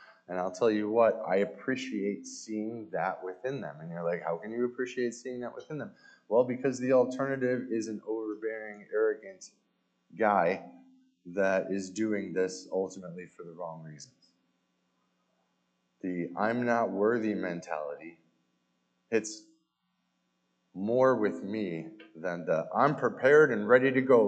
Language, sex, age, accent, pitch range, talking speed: English, male, 20-39, American, 85-130 Hz, 140 wpm